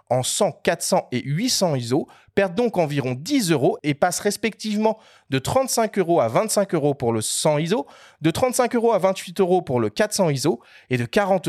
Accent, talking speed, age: French, 195 wpm, 30-49